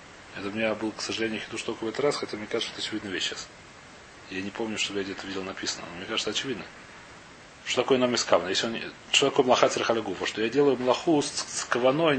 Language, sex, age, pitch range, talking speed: Russian, male, 30-49, 105-140 Hz, 225 wpm